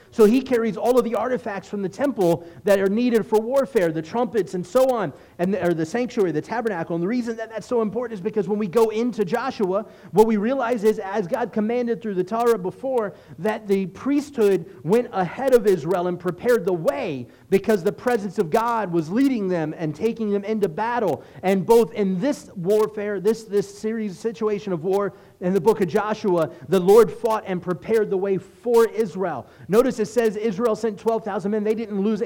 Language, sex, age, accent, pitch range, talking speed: English, male, 30-49, American, 170-220 Hz, 205 wpm